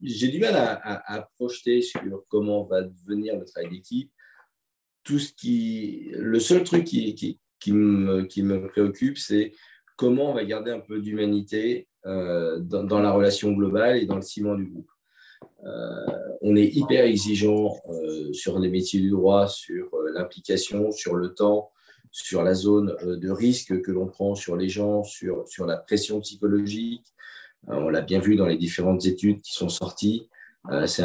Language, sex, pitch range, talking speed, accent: French, male, 95-115 Hz, 180 wpm, French